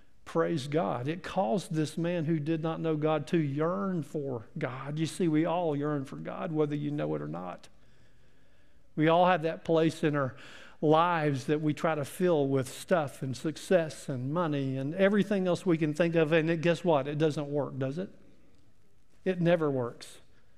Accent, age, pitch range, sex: American, 50-69, 140-175 Hz, male